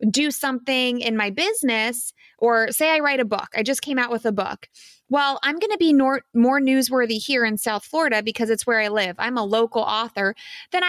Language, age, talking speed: English, 20-39, 215 wpm